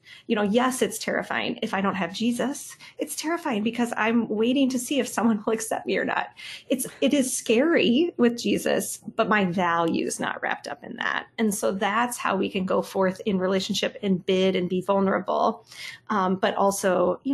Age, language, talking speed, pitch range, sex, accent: 30-49, English, 200 wpm, 185-240 Hz, female, American